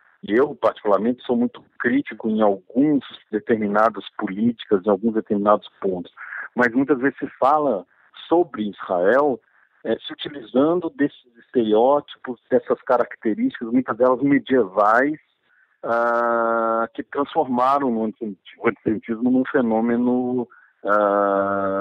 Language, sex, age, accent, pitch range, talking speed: Portuguese, male, 50-69, Brazilian, 105-135 Hz, 115 wpm